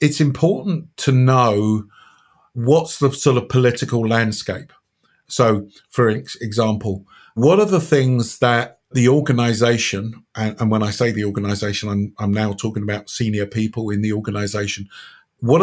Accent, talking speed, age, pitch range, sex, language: British, 140 wpm, 50-69, 115-135 Hz, male, English